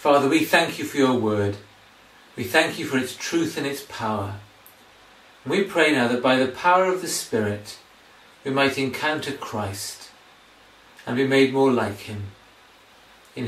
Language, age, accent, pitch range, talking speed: English, 40-59, British, 110-180 Hz, 165 wpm